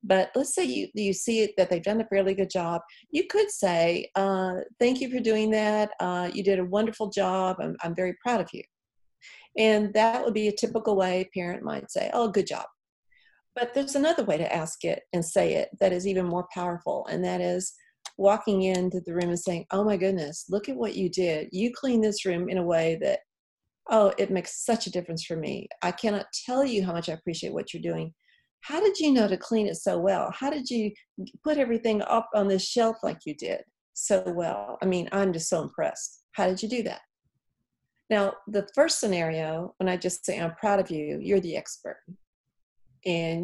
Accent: American